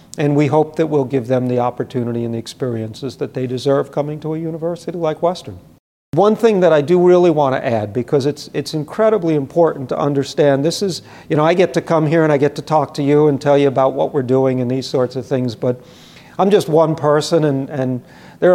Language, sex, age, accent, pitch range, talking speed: English, male, 50-69, American, 125-150 Hz, 235 wpm